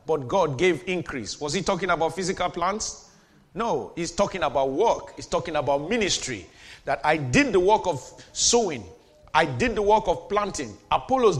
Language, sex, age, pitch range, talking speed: English, male, 40-59, 170-220 Hz, 175 wpm